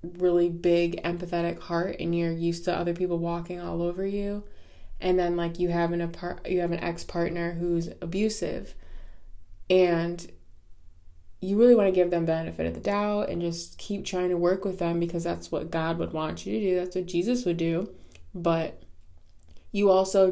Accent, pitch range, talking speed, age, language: American, 165-185 Hz, 190 wpm, 20-39, English